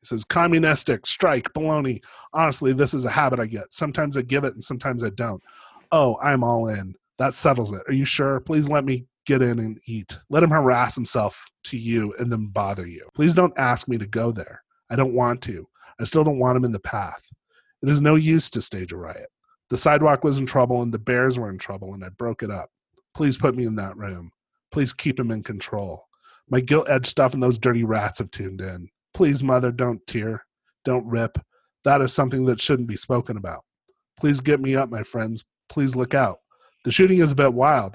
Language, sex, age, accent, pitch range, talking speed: English, male, 30-49, American, 110-140 Hz, 220 wpm